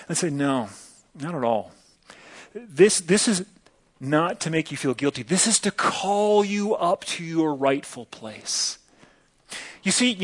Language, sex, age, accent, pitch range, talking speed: English, male, 30-49, American, 180-270 Hz, 165 wpm